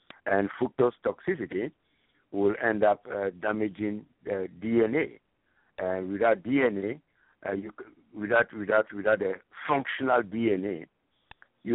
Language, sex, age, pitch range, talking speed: English, male, 60-79, 100-115 Hz, 125 wpm